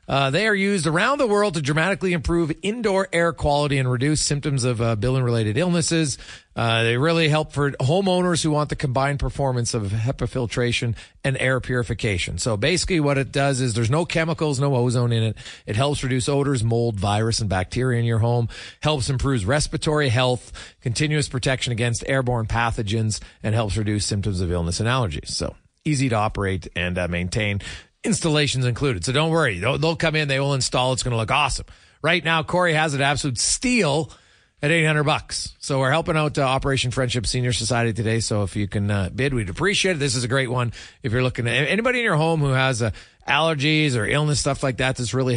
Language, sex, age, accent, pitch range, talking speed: English, male, 40-59, American, 110-150 Hz, 205 wpm